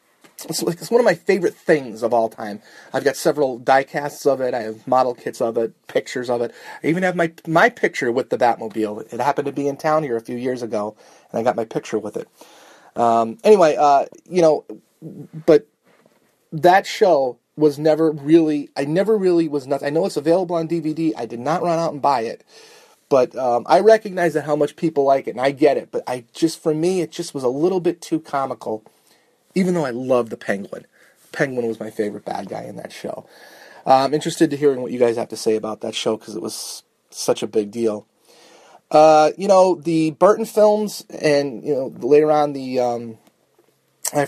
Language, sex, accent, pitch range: English, male, American, 120-170 Hz